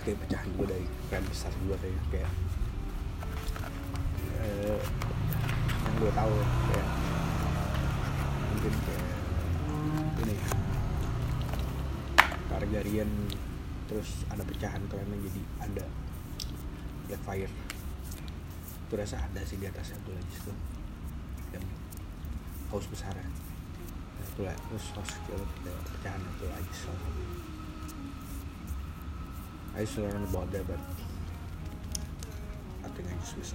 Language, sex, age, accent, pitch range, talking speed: Indonesian, male, 30-49, native, 80-100 Hz, 110 wpm